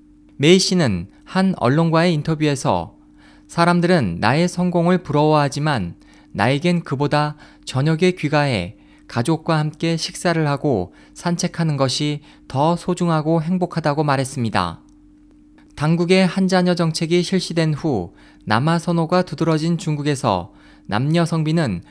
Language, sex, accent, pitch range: Korean, male, native, 125-170 Hz